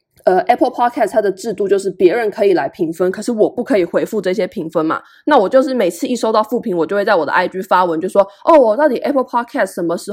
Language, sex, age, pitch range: Chinese, female, 20-39, 200-310 Hz